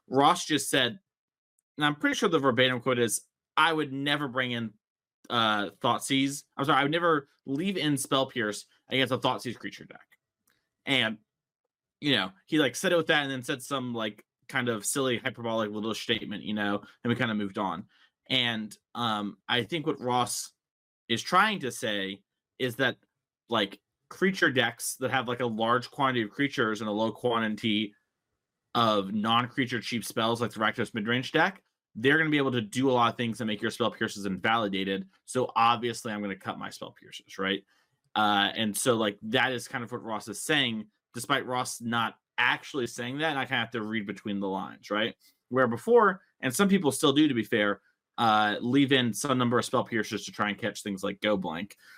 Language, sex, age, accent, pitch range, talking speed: English, male, 30-49, American, 105-135 Hz, 205 wpm